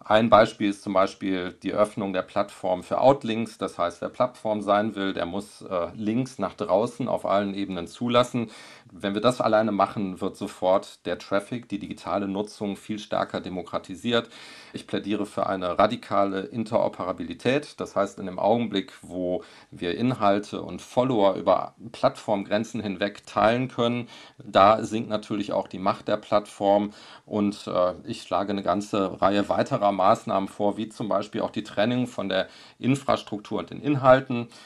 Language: German